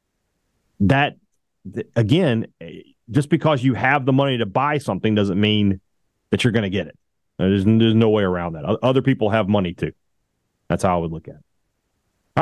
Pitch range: 100-135 Hz